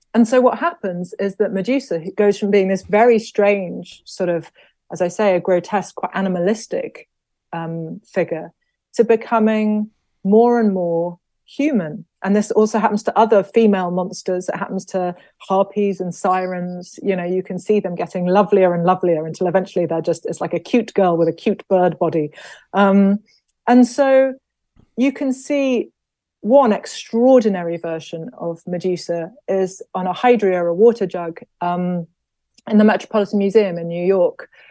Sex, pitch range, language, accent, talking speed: female, 180-220 Hz, English, British, 165 wpm